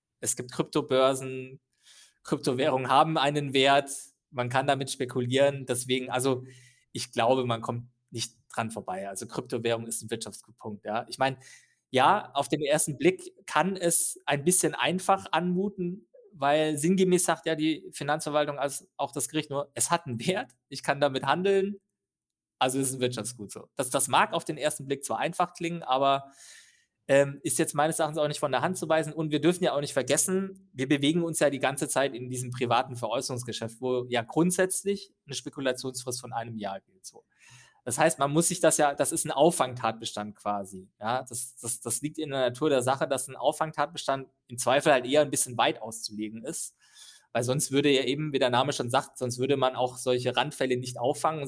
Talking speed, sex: 195 wpm, male